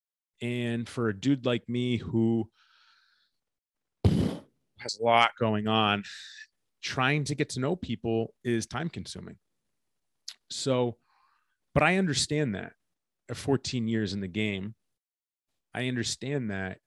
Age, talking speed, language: 30-49, 125 wpm, English